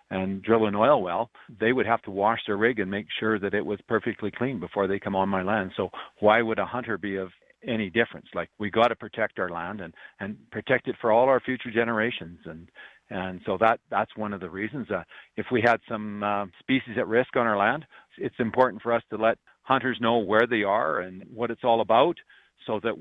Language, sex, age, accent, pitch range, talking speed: English, male, 50-69, American, 100-120 Hz, 230 wpm